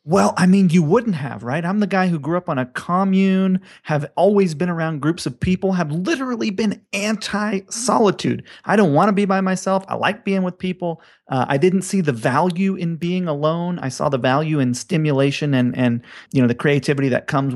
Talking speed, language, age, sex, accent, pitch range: 210 wpm, English, 30-49, male, American, 130-185 Hz